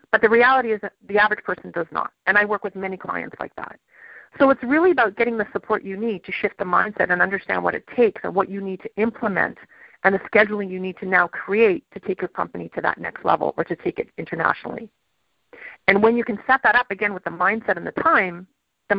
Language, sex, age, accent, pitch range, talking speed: English, female, 40-59, American, 190-235 Hz, 245 wpm